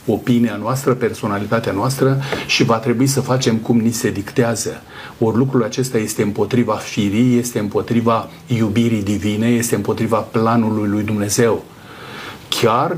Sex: male